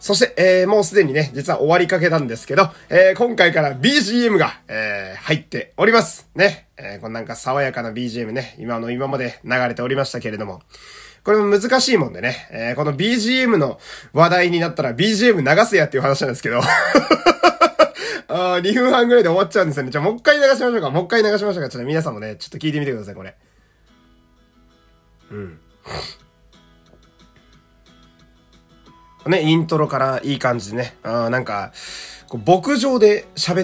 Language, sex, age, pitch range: Japanese, male, 30-49, 110-185 Hz